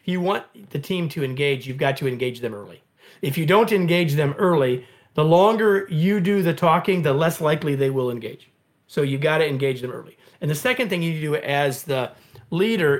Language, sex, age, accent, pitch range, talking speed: English, male, 40-59, American, 130-170 Hz, 225 wpm